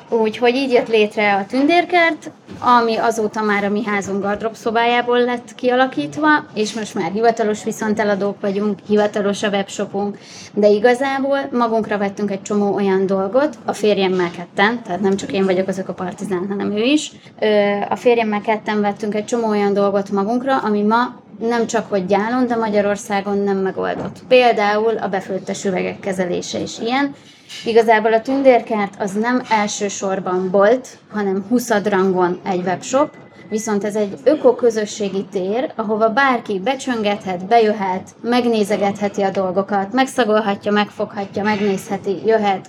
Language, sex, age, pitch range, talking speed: Hungarian, female, 20-39, 200-235 Hz, 140 wpm